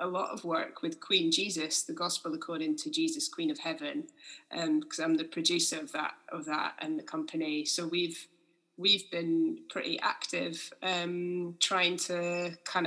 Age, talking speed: 20-39, 175 wpm